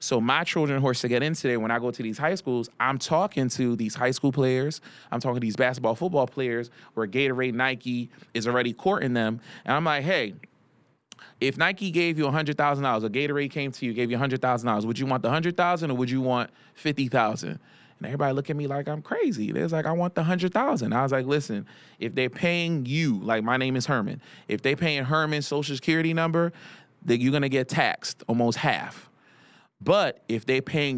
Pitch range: 115-140 Hz